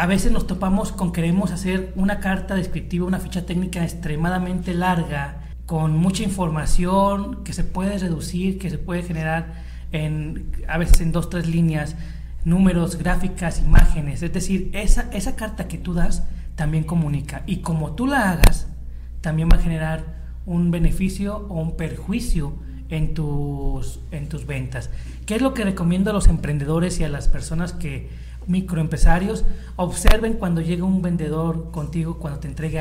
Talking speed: 160 wpm